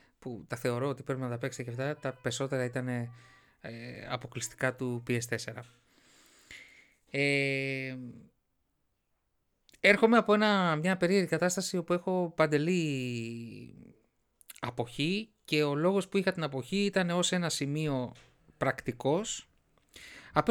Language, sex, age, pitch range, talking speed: Greek, male, 30-49, 130-190 Hz, 110 wpm